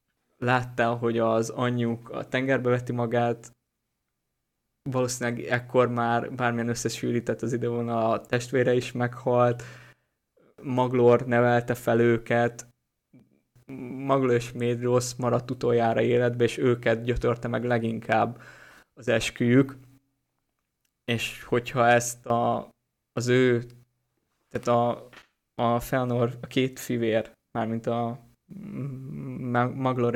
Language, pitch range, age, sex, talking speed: Hungarian, 115-125 Hz, 20-39, male, 105 wpm